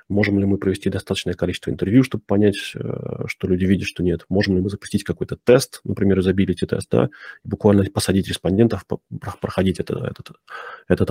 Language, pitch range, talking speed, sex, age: Russian, 95-125 Hz, 160 wpm, male, 30-49